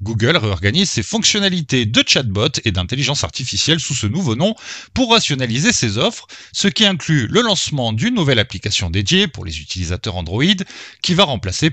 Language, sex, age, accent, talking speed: French, male, 30-49, French, 170 wpm